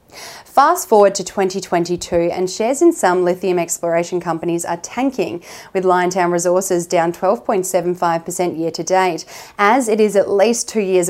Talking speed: 140 wpm